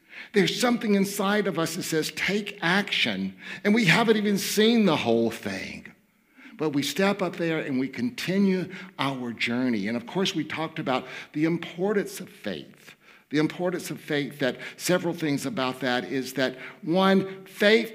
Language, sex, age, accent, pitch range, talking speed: English, male, 60-79, American, 150-205 Hz, 165 wpm